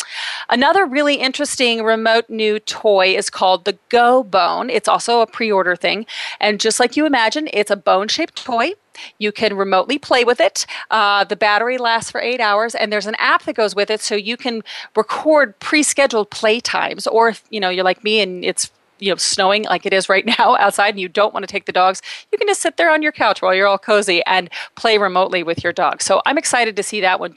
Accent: American